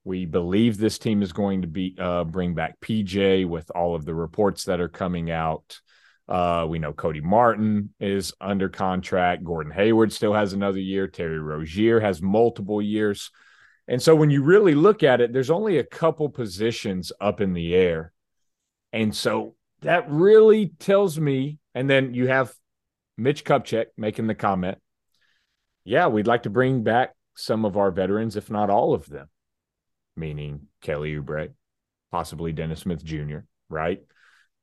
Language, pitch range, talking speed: English, 90-130 Hz, 165 wpm